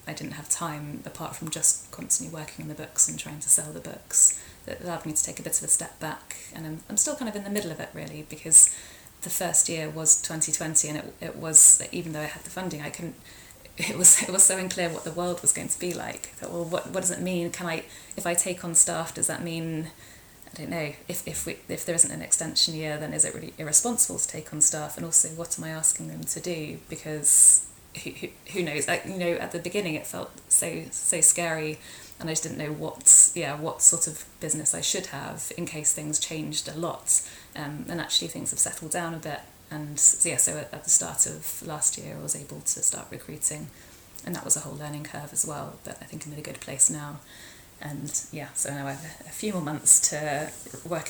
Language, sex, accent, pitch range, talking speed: English, female, British, 150-170 Hz, 250 wpm